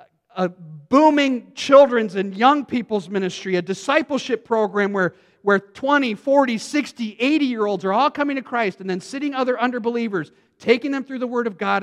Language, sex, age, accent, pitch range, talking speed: English, male, 50-69, American, 145-220 Hz, 165 wpm